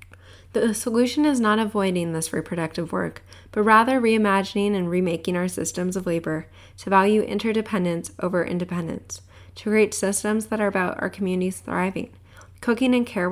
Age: 10-29